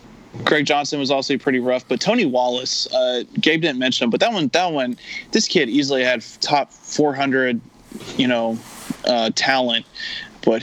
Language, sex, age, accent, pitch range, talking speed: English, male, 20-39, American, 120-130 Hz, 180 wpm